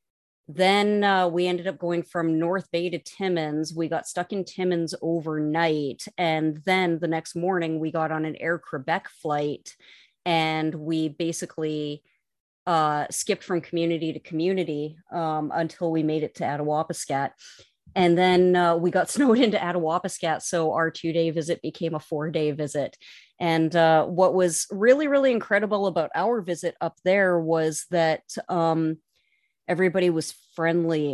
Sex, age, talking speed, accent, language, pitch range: female, 30-49, 155 wpm, American, English, 155-180 Hz